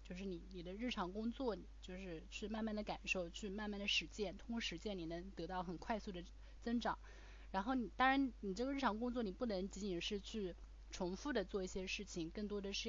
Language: Chinese